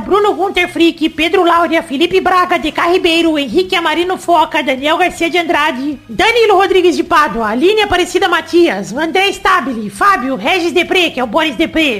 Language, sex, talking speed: Portuguese, female, 165 wpm